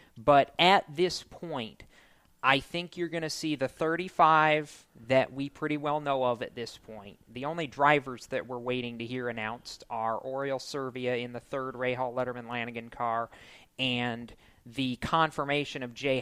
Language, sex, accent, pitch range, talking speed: English, male, American, 125-150 Hz, 165 wpm